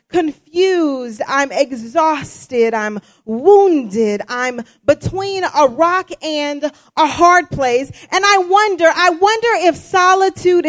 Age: 40-59